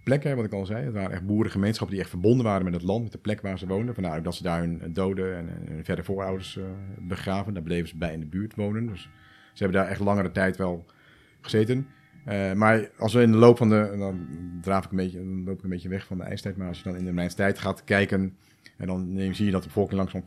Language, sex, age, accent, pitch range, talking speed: Dutch, male, 40-59, Dutch, 90-110 Hz, 280 wpm